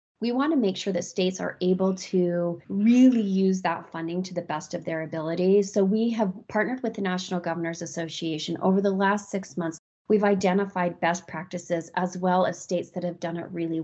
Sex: female